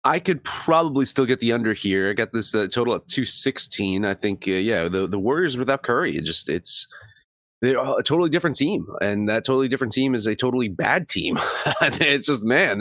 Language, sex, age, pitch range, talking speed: English, male, 30-49, 100-140 Hz, 210 wpm